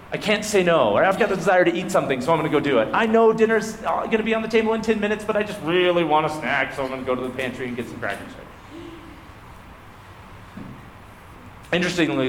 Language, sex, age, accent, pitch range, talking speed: English, male, 30-49, American, 95-140 Hz, 240 wpm